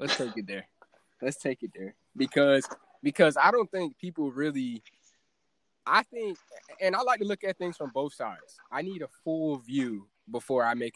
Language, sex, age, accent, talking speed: English, male, 20-39, American, 190 wpm